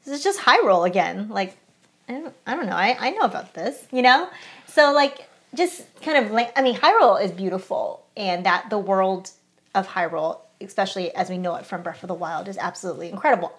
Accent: American